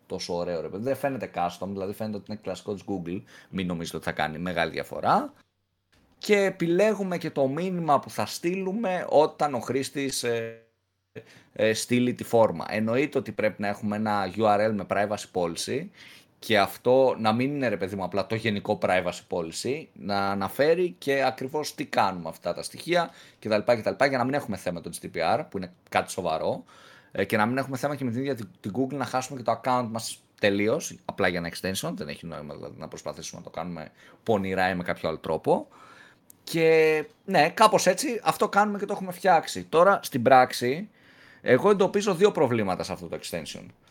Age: 30-49